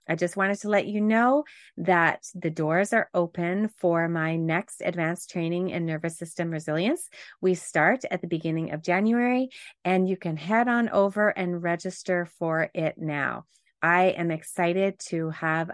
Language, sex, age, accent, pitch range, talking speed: English, female, 30-49, American, 170-220 Hz, 170 wpm